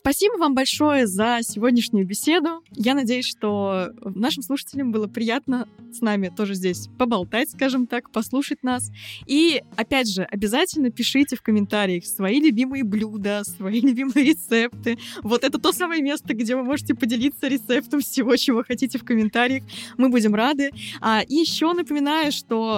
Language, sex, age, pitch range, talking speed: Russian, female, 20-39, 210-275 Hz, 150 wpm